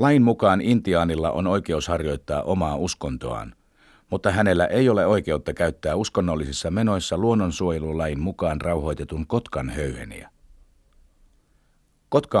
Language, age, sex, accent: Finnish, 60-79, male, native